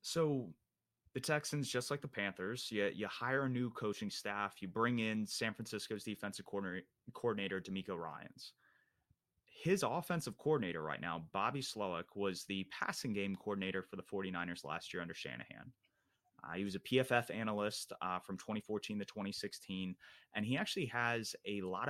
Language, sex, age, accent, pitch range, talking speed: English, male, 30-49, American, 95-120 Hz, 165 wpm